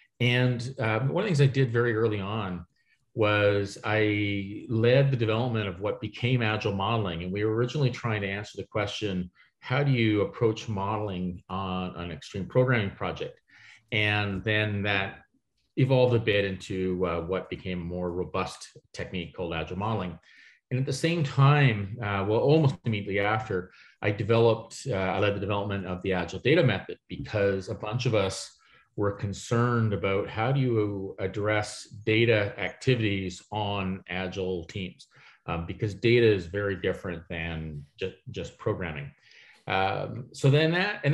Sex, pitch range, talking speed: male, 95-115 Hz, 160 wpm